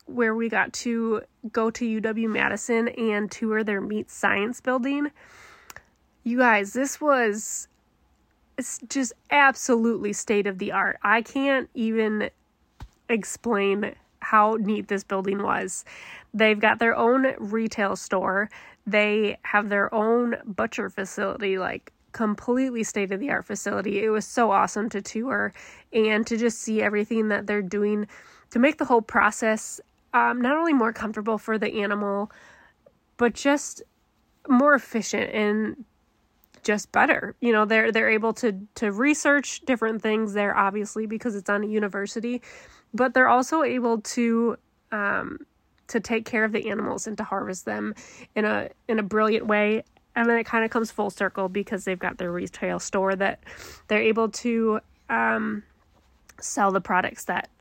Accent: American